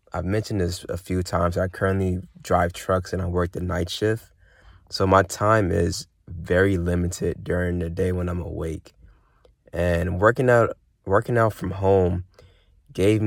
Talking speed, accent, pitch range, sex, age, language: 165 wpm, American, 90-100 Hz, male, 20-39, English